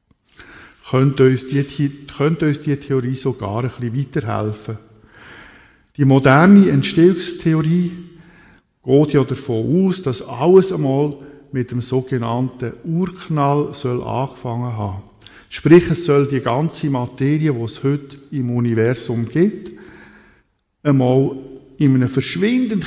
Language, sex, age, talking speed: German, male, 50-69, 110 wpm